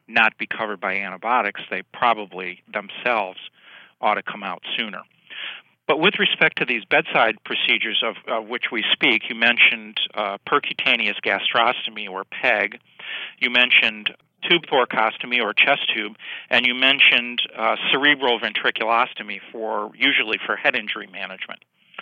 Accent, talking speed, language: American, 140 wpm, English